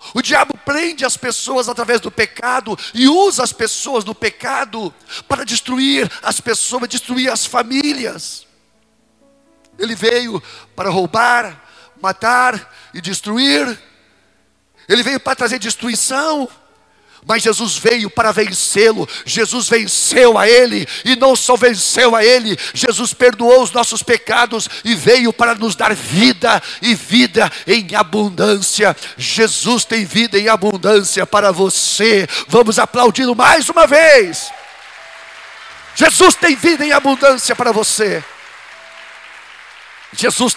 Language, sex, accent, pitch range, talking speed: Portuguese, male, Brazilian, 215-260 Hz, 125 wpm